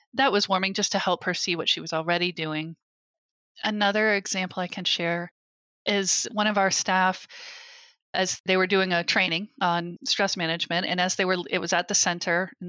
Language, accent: English, American